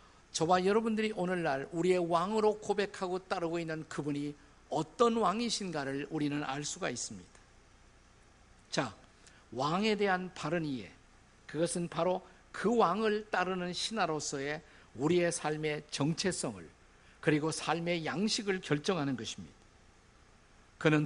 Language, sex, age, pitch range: Korean, male, 50-69, 140-185 Hz